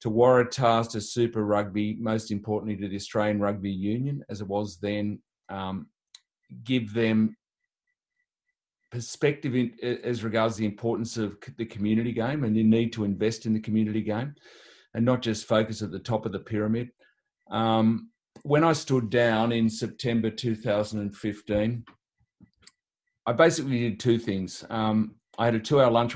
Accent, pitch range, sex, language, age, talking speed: Australian, 105-120 Hz, male, English, 40-59, 155 wpm